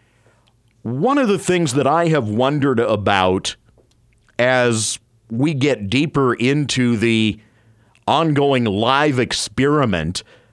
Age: 50-69